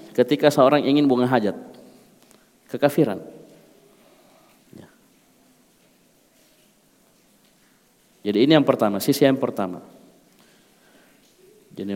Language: Indonesian